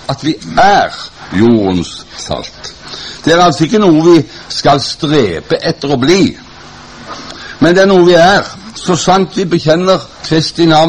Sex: male